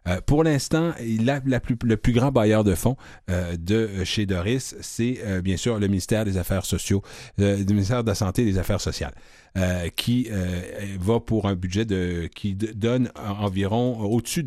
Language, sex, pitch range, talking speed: French, male, 95-120 Hz, 180 wpm